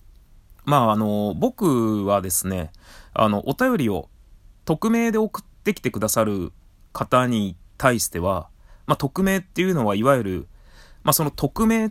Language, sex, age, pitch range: Japanese, male, 20-39, 95-145 Hz